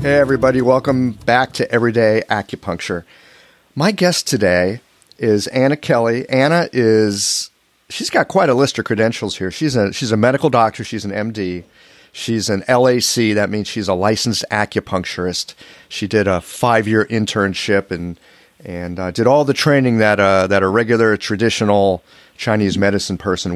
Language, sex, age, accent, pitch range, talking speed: English, male, 40-59, American, 100-125 Hz, 160 wpm